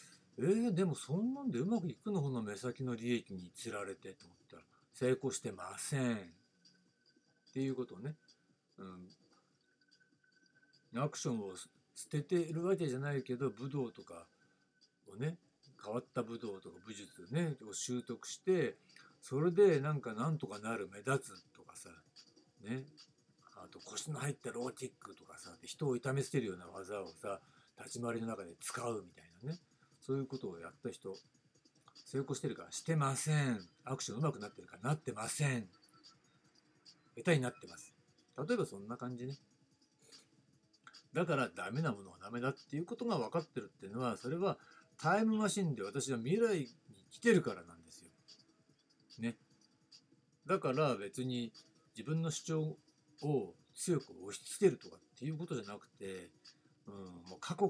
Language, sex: Japanese, male